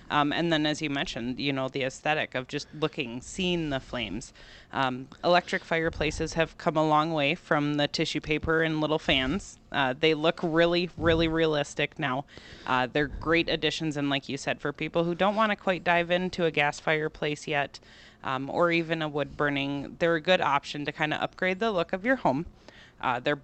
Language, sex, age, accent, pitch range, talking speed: English, female, 20-39, American, 140-170 Hz, 205 wpm